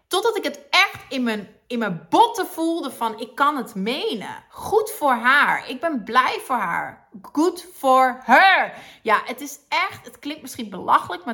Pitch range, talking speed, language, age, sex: 215-275 Hz, 180 wpm, Dutch, 30-49, female